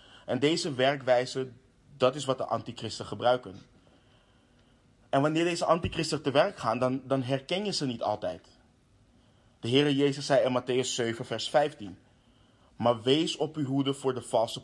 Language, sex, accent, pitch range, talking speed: Dutch, male, Dutch, 120-145 Hz, 165 wpm